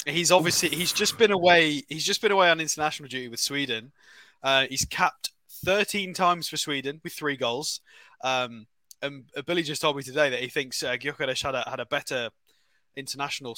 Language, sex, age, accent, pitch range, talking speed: English, male, 20-39, British, 130-170 Hz, 190 wpm